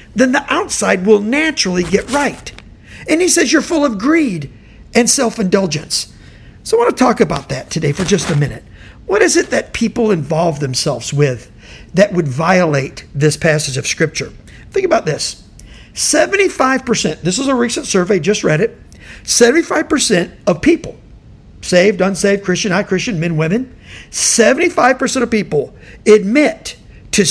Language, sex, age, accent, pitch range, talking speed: English, male, 50-69, American, 170-275 Hz, 155 wpm